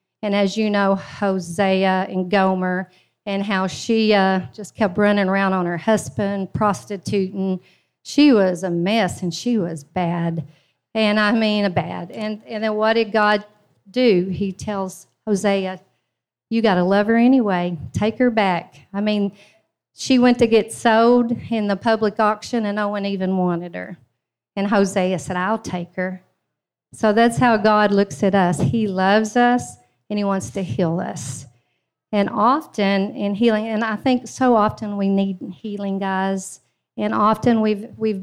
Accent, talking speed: American, 170 wpm